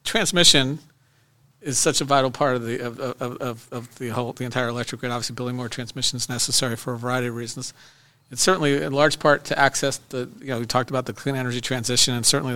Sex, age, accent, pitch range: male, 50-69, American, 120-140 Hz